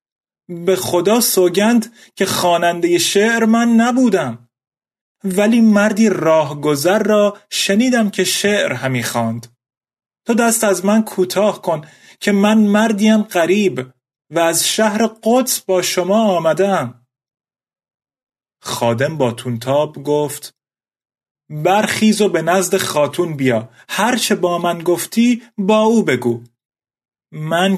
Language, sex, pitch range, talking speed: Persian, male, 150-215 Hz, 110 wpm